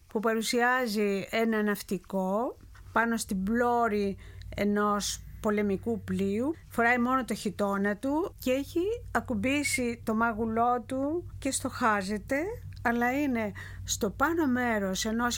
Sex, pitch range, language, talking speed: female, 200-260 Hz, Greek, 115 wpm